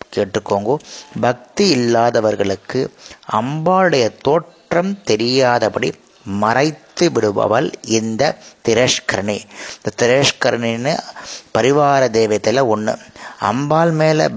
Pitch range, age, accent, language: 105-145 Hz, 30-49, native, Tamil